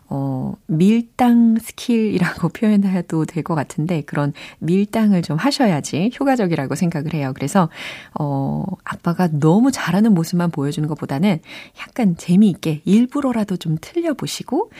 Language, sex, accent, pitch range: Korean, female, native, 160-235 Hz